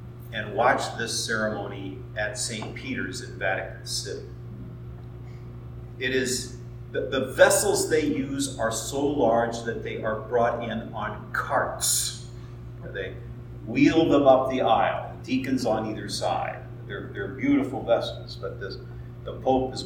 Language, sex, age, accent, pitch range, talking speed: English, male, 40-59, American, 105-125 Hz, 140 wpm